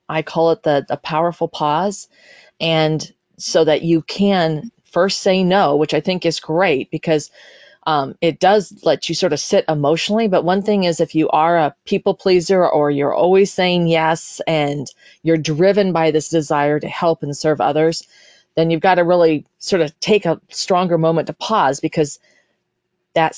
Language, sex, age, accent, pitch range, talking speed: English, female, 40-59, American, 155-185 Hz, 180 wpm